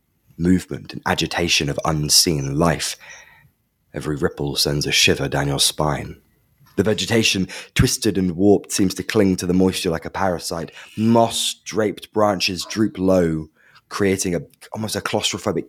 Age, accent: 20-39, British